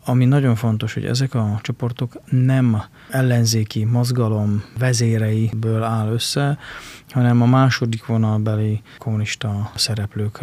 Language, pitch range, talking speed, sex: Hungarian, 105-120 Hz, 110 wpm, male